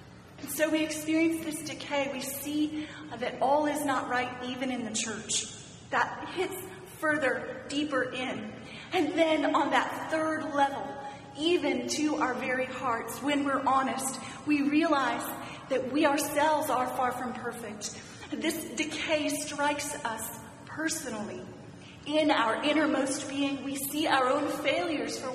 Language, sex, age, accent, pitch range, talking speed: English, female, 40-59, American, 230-290 Hz, 140 wpm